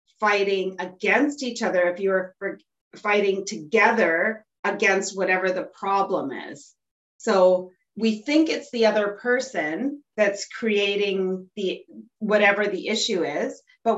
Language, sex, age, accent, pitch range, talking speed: English, female, 30-49, American, 185-230 Hz, 120 wpm